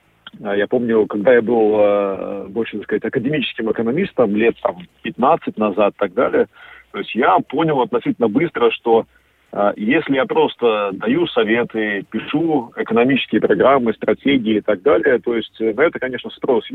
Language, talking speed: Russian, 145 wpm